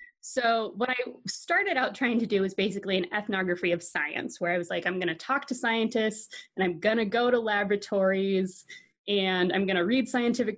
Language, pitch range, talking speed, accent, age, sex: English, 185-240 Hz, 210 wpm, American, 20-39, female